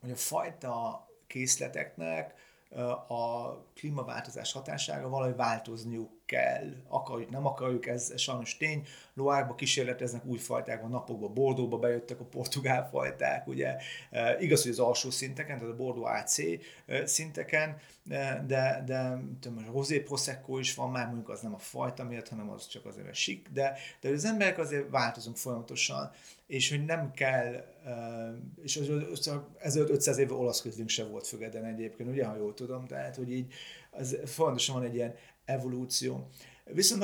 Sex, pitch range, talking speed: male, 115-135 Hz, 155 wpm